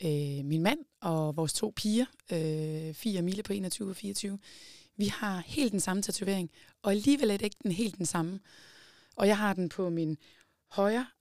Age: 20-39